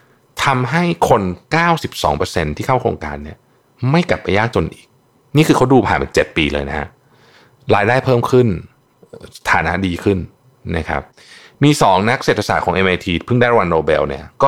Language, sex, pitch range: Thai, male, 85-130 Hz